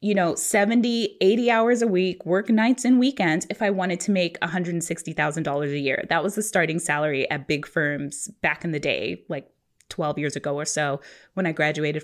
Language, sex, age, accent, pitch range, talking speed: English, female, 20-39, American, 180-245 Hz, 200 wpm